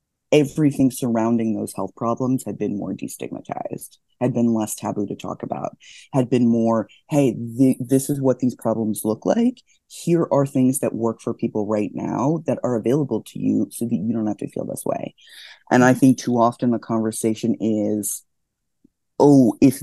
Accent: American